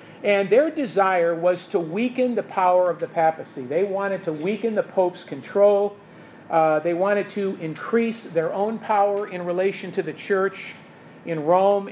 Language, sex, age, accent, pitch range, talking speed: English, male, 50-69, American, 170-205 Hz, 165 wpm